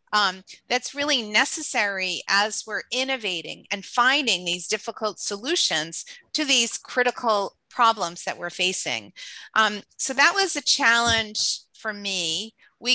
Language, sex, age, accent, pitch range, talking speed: English, female, 40-59, American, 205-275 Hz, 130 wpm